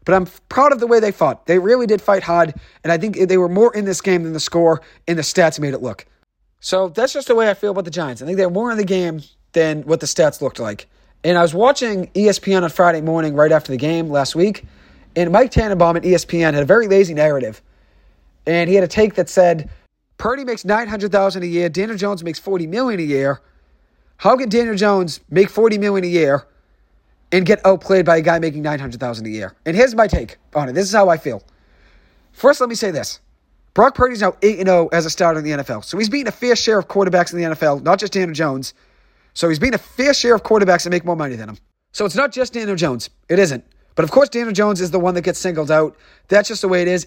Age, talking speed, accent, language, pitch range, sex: 30-49, 250 wpm, American, English, 155-205 Hz, male